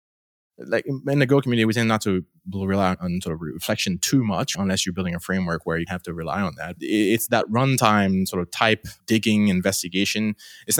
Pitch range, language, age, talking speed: 95-140 Hz, English, 20-39, 205 wpm